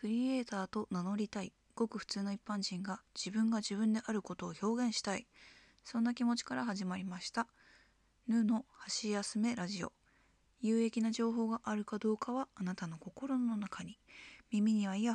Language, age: Japanese, 20-39